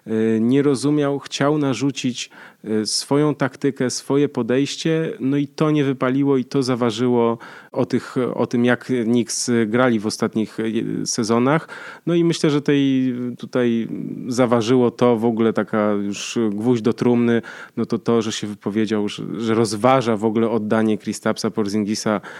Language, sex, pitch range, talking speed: Polish, male, 115-145 Hz, 145 wpm